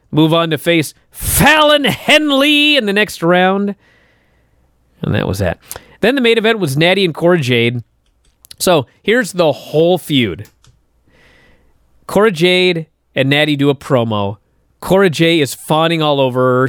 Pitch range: 135-185 Hz